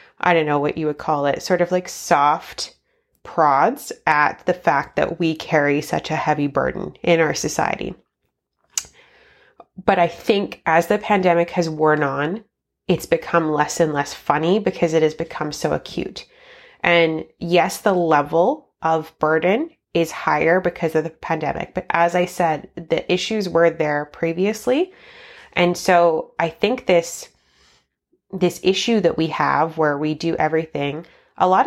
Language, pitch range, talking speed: English, 155-180 Hz, 160 wpm